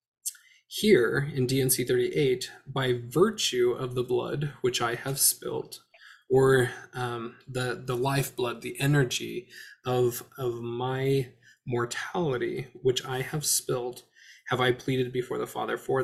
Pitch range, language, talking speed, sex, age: 125-150 Hz, English, 135 wpm, male, 20-39